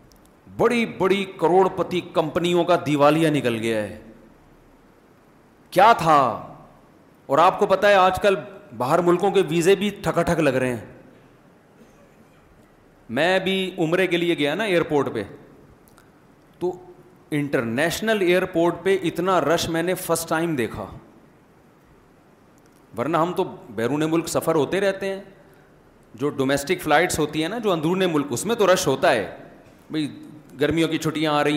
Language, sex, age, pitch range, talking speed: Urdu, male, 40-59, 140-190 Hz, 140 wpm